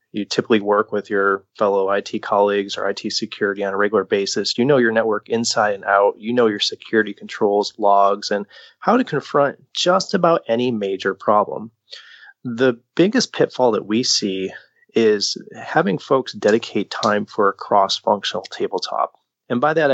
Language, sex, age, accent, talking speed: English, male, 30-49, American, 165 wpm